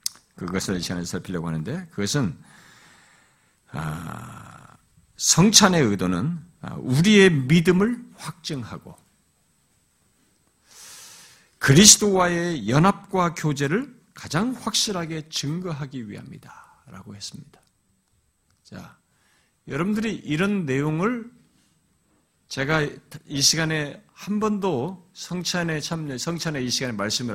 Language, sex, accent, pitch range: Korean, male, native, 135-195 Hz